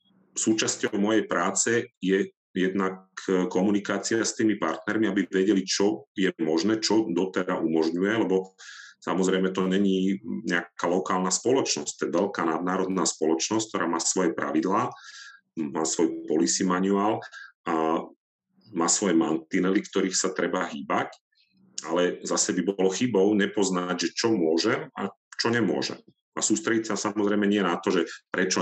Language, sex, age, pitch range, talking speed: Czech, male, 40-59, 90-105 Hz, 140 wpm